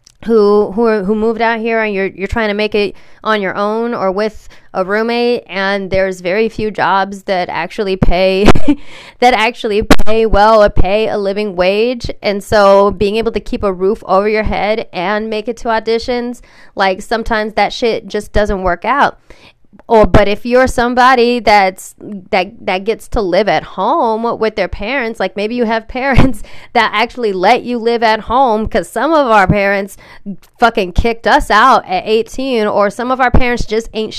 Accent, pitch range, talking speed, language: American, 195-235 Hz, 190 wpm, English